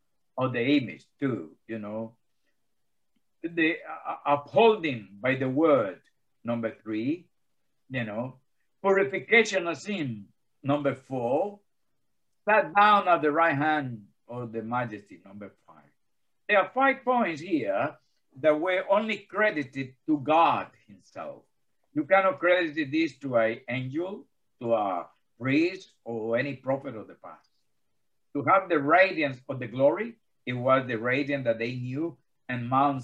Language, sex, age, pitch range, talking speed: English, male, 60-79, 125-170 Hz, 140 wpm